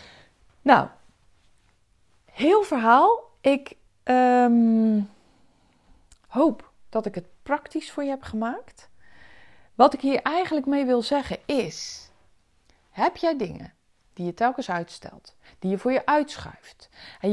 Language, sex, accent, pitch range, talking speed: Dutch, female, Dutch, 200-295 Hz, 120 wpm